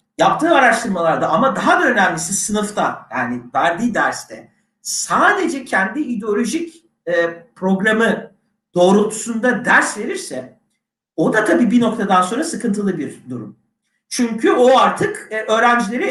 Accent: native